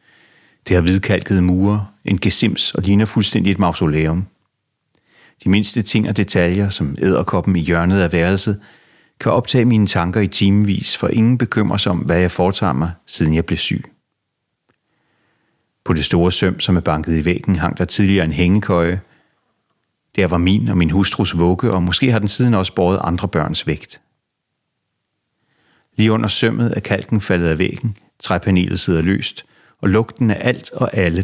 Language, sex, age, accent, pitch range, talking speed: Danish, male, 40-59, native, 90-110 Hz, 170 wpm